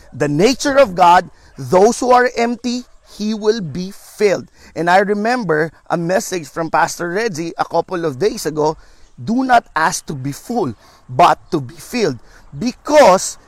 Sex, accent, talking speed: male, native, 160 wpm